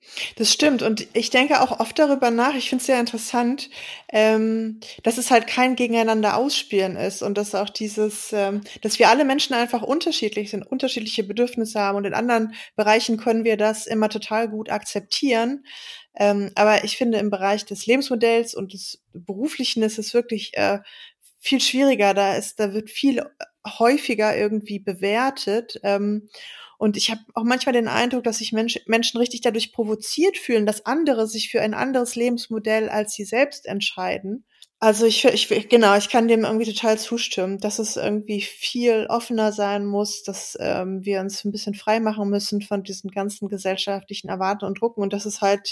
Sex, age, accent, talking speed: female, 20-39, German, 180 wpm